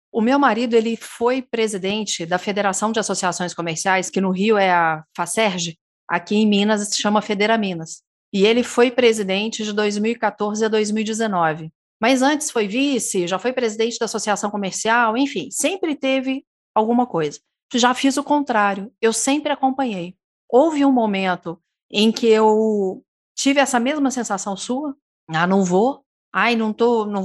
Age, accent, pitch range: 40-59, Brazilian, 205-245 Hz